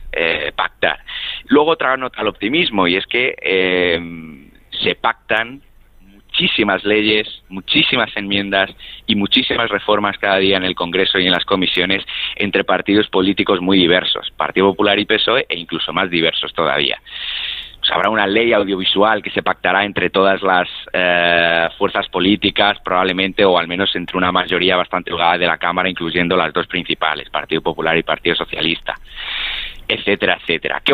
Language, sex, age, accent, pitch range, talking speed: Spanish, male, 30-49, Spanish, 90-105 Hz, 155 wpm